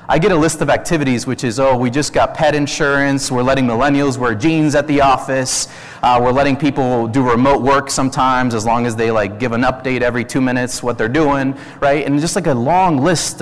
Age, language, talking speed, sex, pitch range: 30-49, English, 230 wpm, male, 120-150 Hz